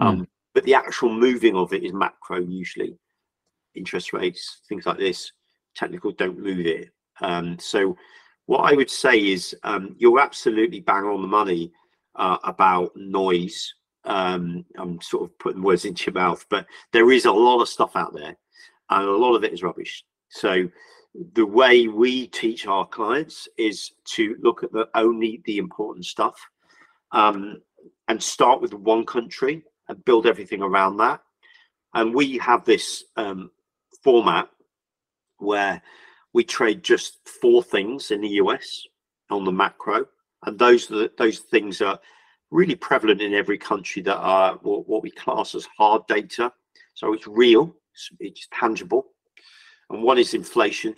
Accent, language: British, English